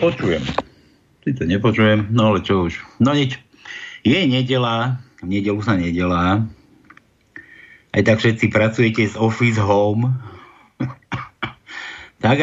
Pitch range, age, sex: 105-130 Hz, 60-79, male